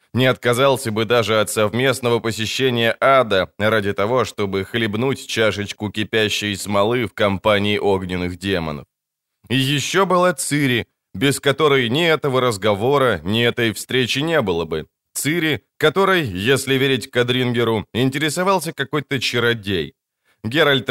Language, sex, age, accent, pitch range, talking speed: Ukrainian, male, 20-39, native, 110-140 Hz, 125 wpm